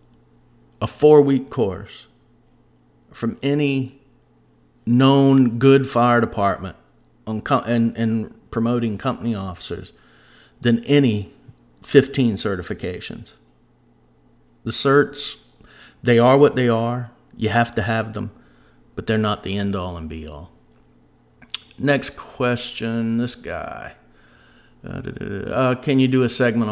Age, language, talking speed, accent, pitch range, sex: 50-69, English, 105 wpm, American, 95-125 Hz, male